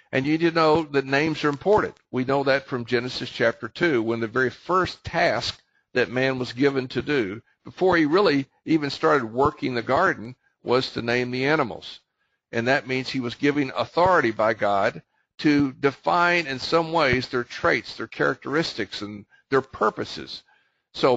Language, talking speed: English, 175 wpm